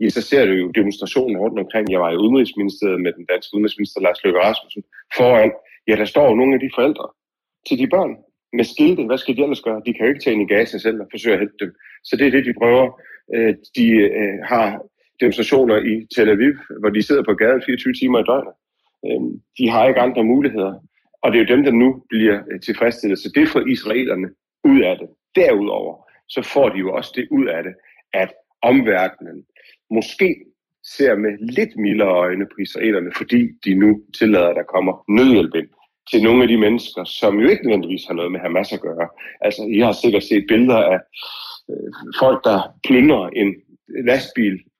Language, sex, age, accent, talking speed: Danish, male, 40-59, native, 195 wpm